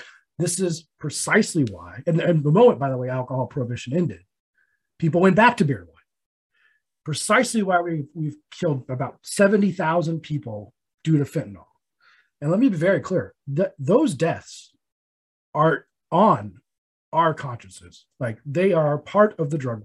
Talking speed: 145 wpm